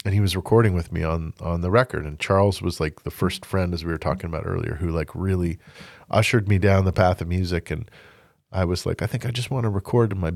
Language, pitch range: English, 85-105 Hz